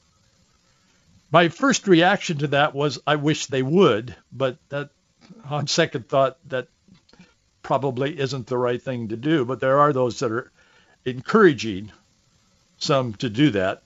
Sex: male